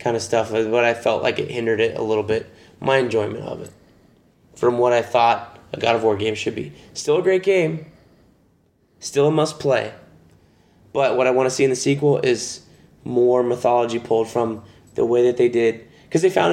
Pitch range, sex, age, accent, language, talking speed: 115-135 Hz, male, 20-39, American, English, 210 wpm